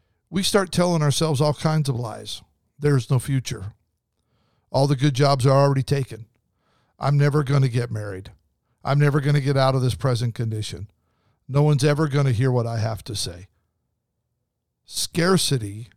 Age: 50-69